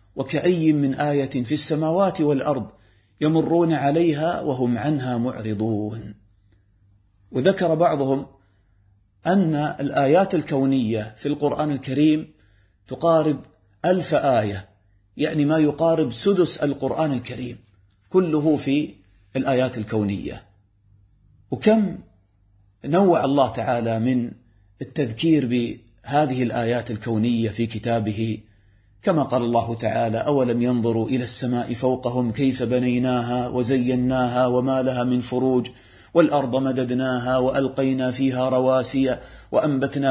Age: 40-59